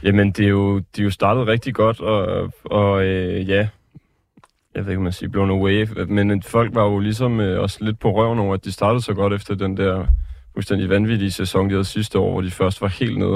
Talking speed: 245 wpm